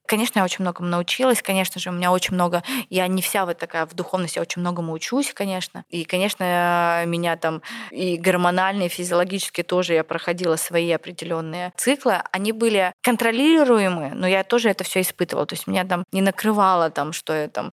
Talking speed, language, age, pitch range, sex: 185 wpm, Russian, 20-39, 170-195 Hz, female